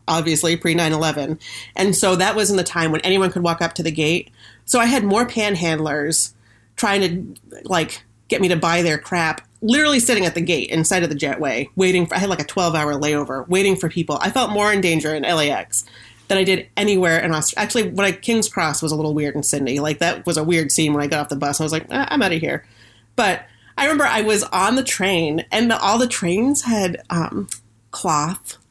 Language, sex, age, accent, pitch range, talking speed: English, female, 30-49, American, 155-200 Hz, 235 wpm